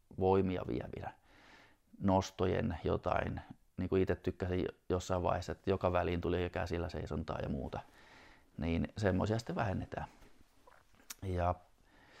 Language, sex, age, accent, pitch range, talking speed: Finnish, male, 30-49, native, 90-100 Hz, 115 wpm